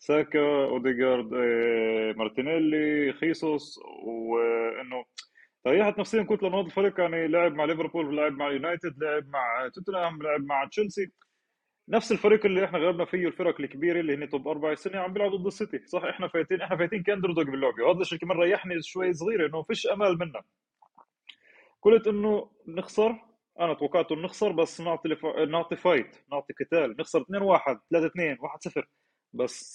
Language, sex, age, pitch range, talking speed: Arabic, male, 20-39, 150-195 Hz, 145 wpm